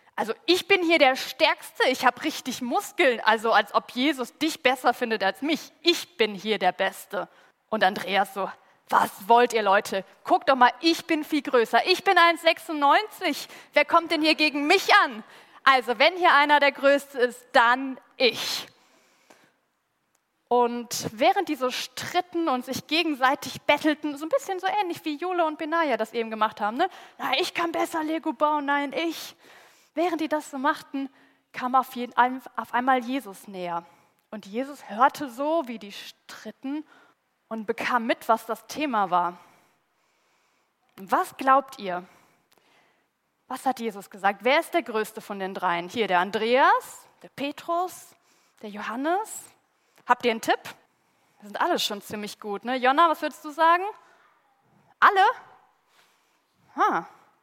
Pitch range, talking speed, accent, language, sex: 225-320 Hz, 160 wpm, German, German, female